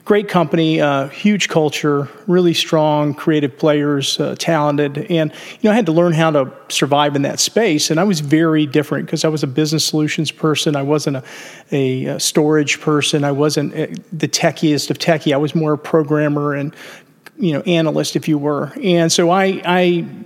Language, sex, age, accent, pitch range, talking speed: English, male, 40-59, American, 150-175 Hz, 190 wpm